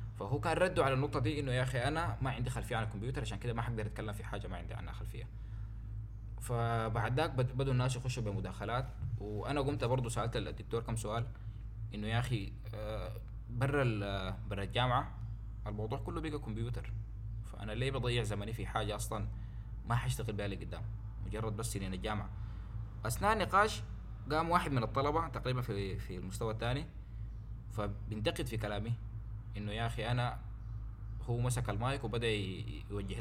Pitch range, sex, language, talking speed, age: 105-120 Hz, male, Arabic, 165 wpm, 20-39